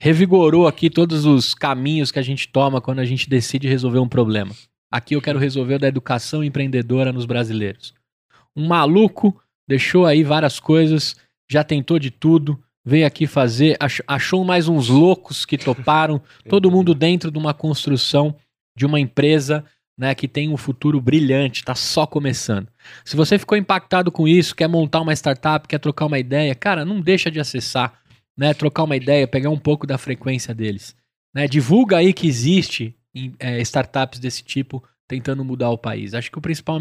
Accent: Brazilian